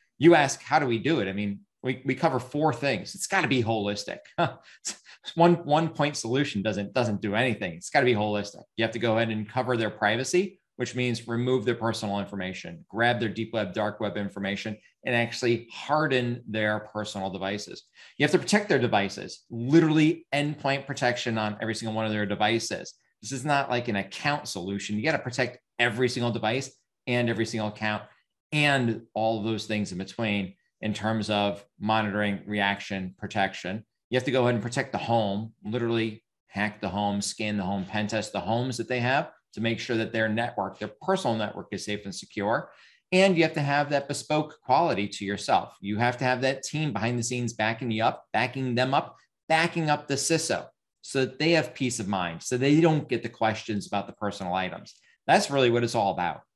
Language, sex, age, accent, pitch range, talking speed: English, male, 30-49, American, 105-130 Hz, 205 wpm